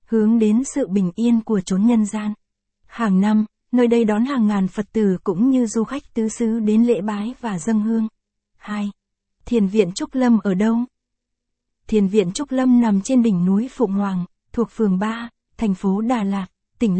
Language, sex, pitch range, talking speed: Vietnamese, female, 200-235 Hz, 195 wpm